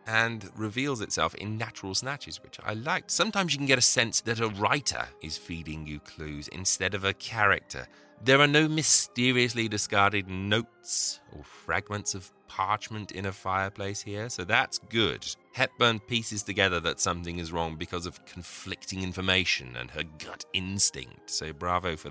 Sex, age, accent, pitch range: male, 30-49, British, 95-130 Hz